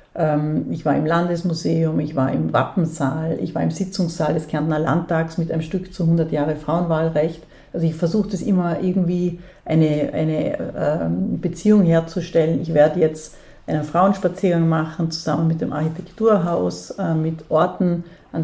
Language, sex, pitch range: German, female, 160-185 Hz